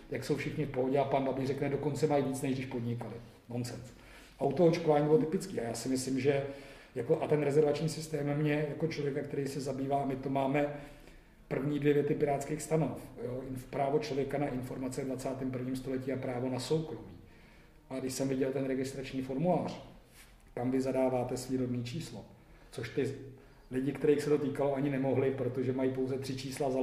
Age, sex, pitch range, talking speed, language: 40-59, male, 125-145 Hz, 185 wpm, Czech